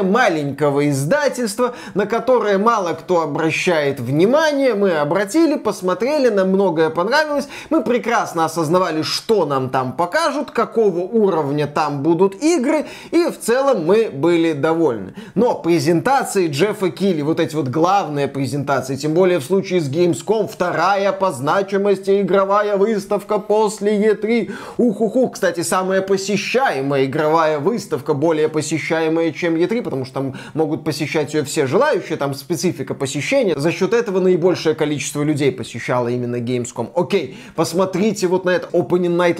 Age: 20-39